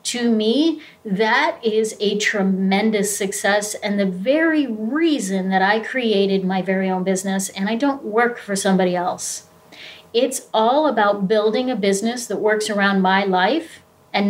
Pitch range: 195-250 Hz